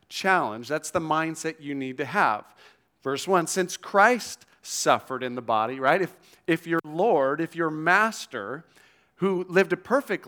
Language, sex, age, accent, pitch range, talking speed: English, male, 40-59, American, 135-190 Hz, 165 wpm